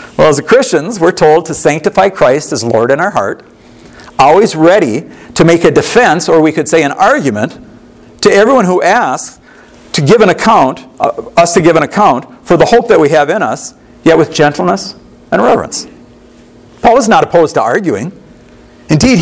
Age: 50-69